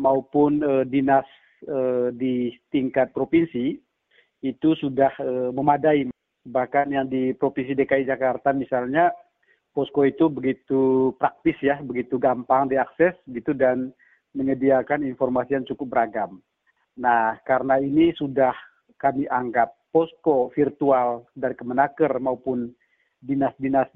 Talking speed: 115 wpm